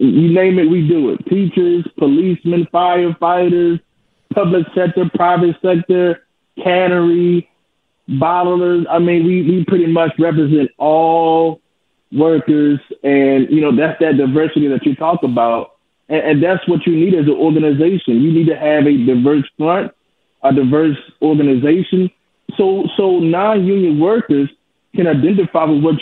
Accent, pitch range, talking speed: American, 145-175 Hz, 140 wpm